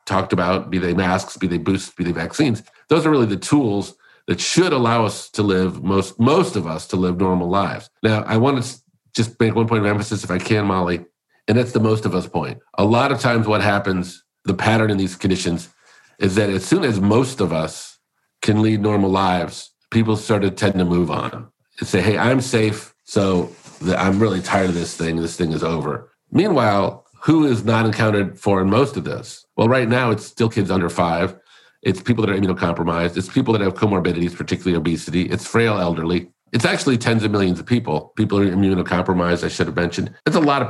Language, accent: English, American